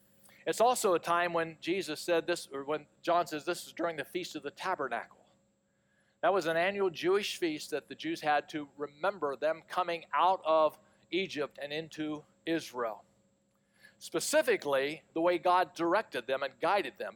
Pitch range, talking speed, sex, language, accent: 155-200 Hz, 170 wpm, male, English, American